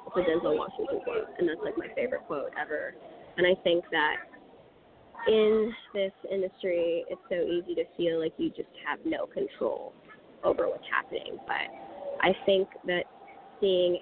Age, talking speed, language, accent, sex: 20-39, 160 wpm, English, American, female